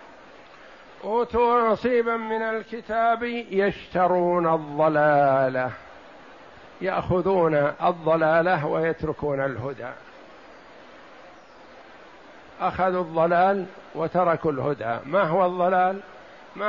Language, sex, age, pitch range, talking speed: Arabic, male, 60-79, 170-210 Hz, 65 wpm